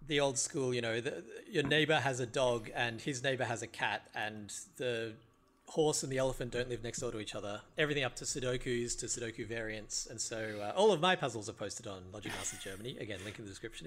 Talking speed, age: 235 wpm, 40-59